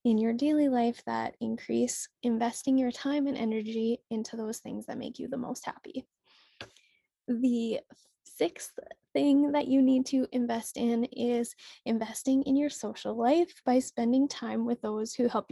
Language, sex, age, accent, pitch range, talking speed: English, female, 10-29, American, 225-265 Hz, 160 wpm